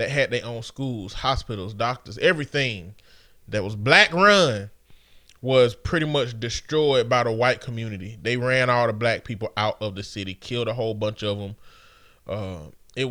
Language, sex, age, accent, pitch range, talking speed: English, male, 20-39, American, 120-165 Hz, 170 wpm